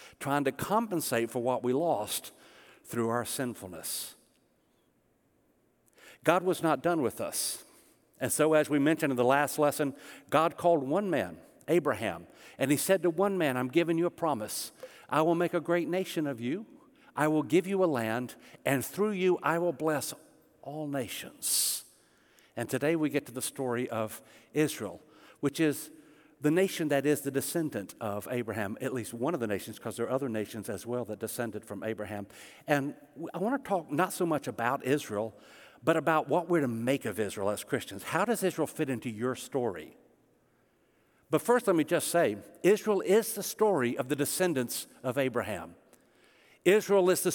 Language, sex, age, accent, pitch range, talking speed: English, male, 60-79, American, 125-175 Hz, 180 wpm